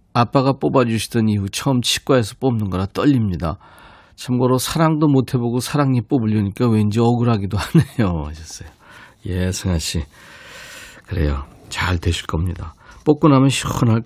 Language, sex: Korean, male